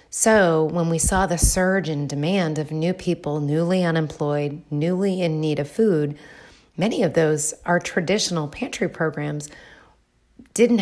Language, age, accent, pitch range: English, 30-49, American, 150-180 Hz